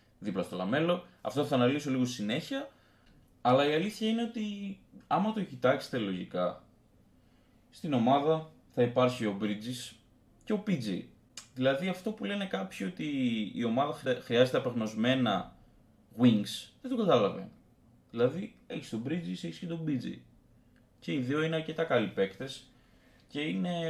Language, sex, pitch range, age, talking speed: Greek, male, 110-165 Hz, 20-39, 145 wpm